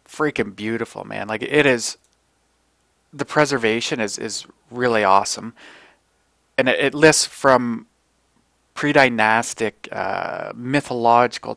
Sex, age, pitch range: male, 30-49, 110-135 Hz